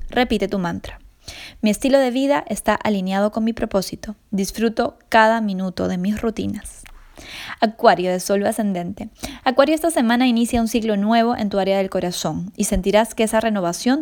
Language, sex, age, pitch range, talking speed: Spanish, female, 10-29, 190-235 Hz, 165 wpm